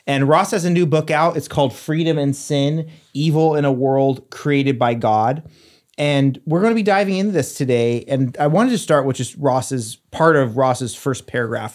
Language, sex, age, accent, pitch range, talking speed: English, male, 30-49, American, 120-150 Hz, 210 wpm